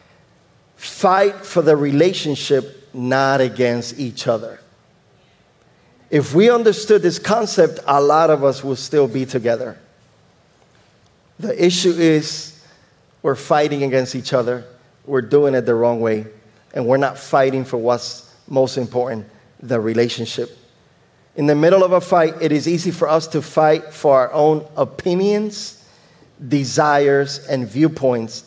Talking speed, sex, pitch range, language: 135 wpm, male, 130-160 Hz, English